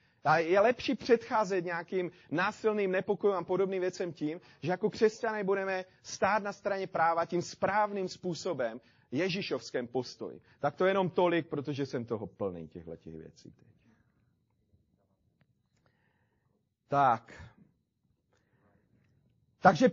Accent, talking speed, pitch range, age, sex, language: native, 115 wpm, 140-195 Hz, 40-59, male, Czech